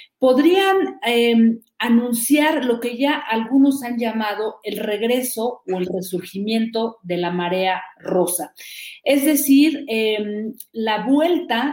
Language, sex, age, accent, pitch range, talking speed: Spanish, female, 40-59, Mexican, 195-250 Hz, 120 wpm